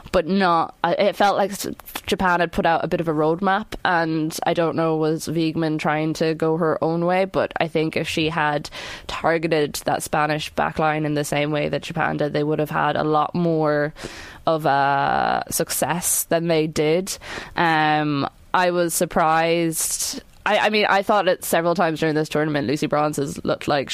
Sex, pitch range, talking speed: female, 150-170 Hz, 195 wpm